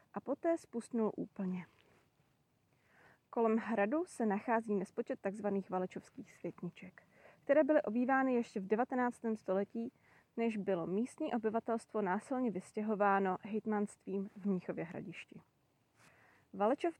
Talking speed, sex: 105 wpm, female